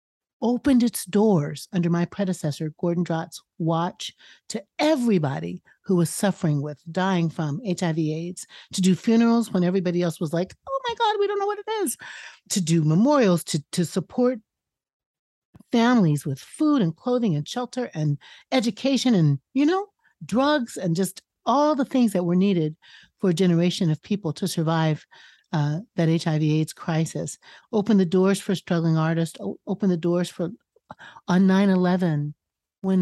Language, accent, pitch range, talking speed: English, American, 160-205 Hz, 160 wpm